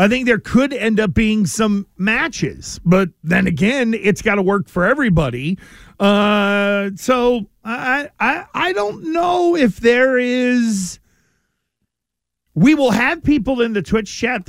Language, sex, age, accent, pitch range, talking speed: English, male, 40-59, American, 195-240 Hz, 155 wpm